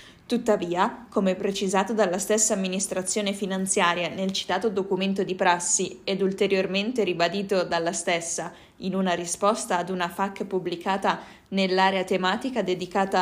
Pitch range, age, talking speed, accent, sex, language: 185-220 Hz, 20-39, 125 wpm, native, female, Italian